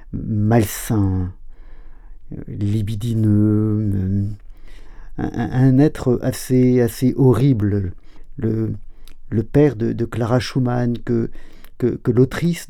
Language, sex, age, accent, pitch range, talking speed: French, male, 50-69, French, 105-130 Hz, 90 wpm